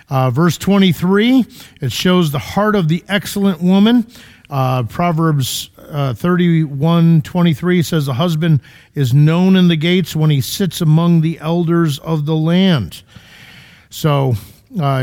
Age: 50-69